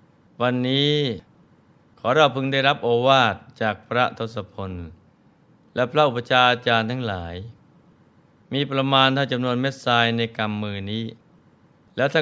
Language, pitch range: Thai, 110-130 Hz